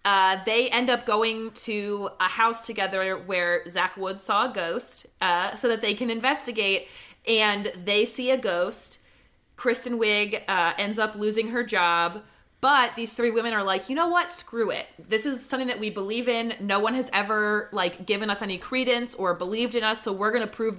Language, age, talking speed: English, 20-39, 200 wpm